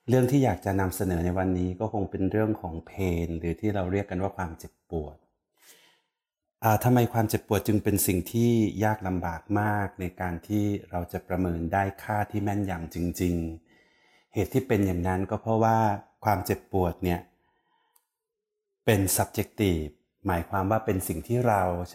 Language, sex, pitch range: Thai, male, 90-110 Hz